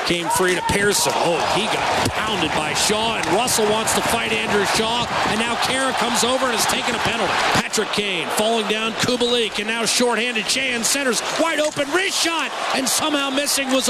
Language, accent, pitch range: English, American, 220-305 Hz